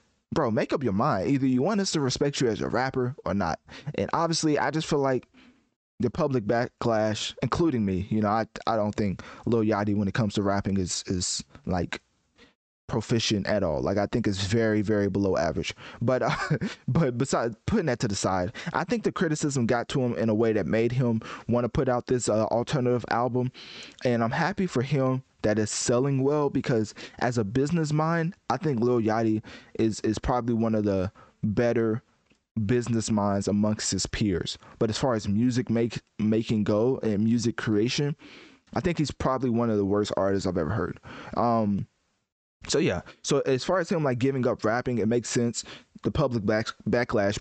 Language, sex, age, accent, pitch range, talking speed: English, male, 20-39, American, 110-135 Hz, 200 wpm